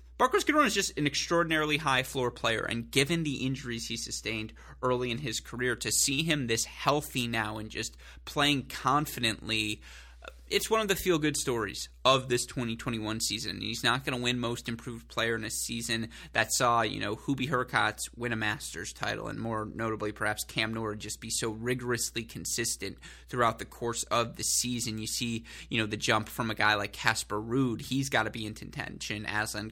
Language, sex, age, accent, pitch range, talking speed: English, male, 20-39, American, 110-140 Hz, 195 wpm